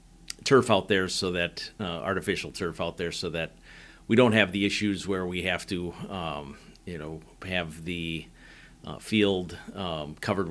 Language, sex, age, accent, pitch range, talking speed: English, male, 50-69, American, 85-95 Hz, 170 wpm